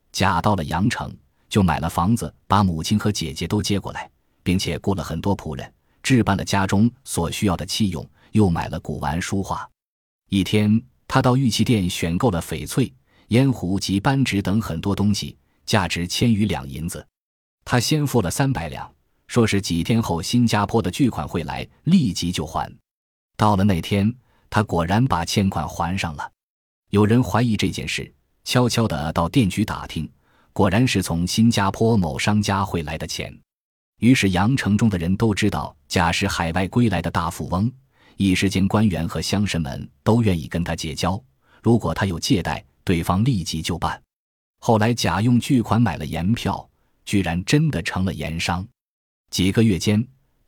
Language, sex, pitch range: Chinese, male, 85-115 Hz